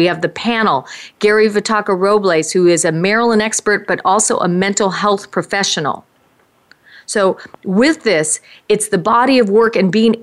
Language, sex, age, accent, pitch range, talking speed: English, female, 40-59, American, 195-255 Hz, 160 wpm